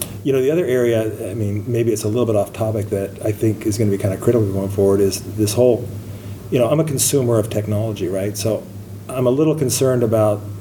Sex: male